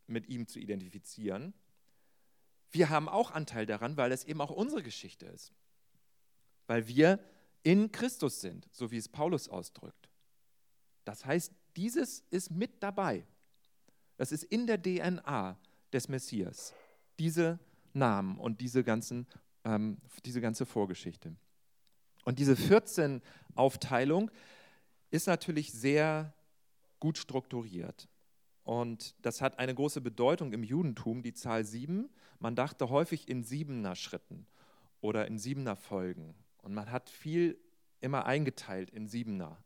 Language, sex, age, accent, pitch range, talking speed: German, male, 40-59, German, 115-165 Hz, 125 wpm